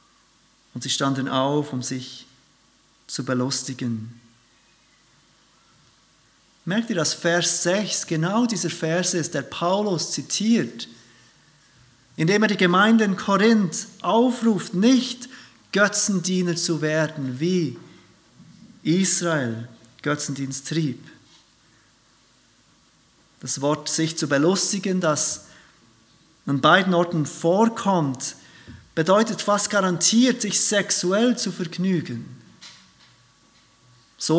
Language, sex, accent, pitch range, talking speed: German, male, German, 150-195 Hz, 90 wpm